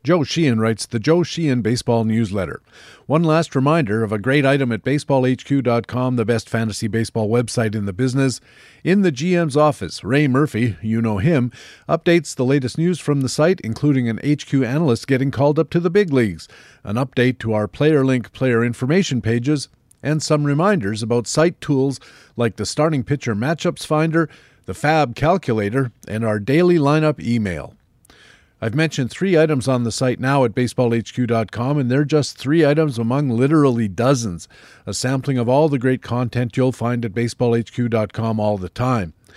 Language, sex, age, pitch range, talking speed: English, male, 50-69, 115-145 Hz, 170 wpm